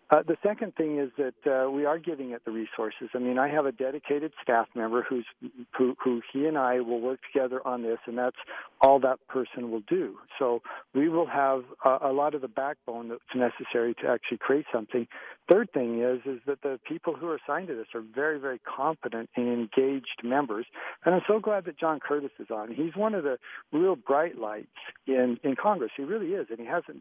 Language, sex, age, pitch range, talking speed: English, male, 50-69, 125-155 Hz, 220 wpm